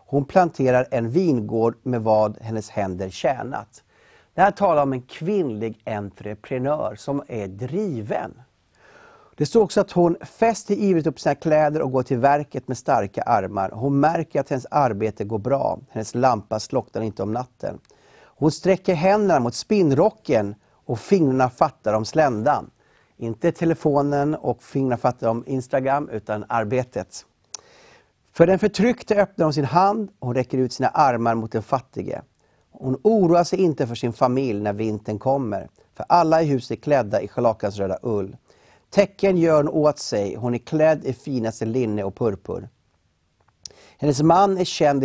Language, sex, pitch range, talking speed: Swedish, male, 110-155 Hz, 160 wpm